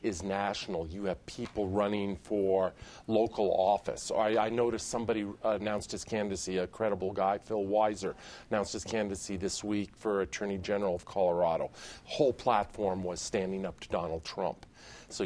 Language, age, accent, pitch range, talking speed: English, 40-59, American, 95-110 Hz, 155 wpm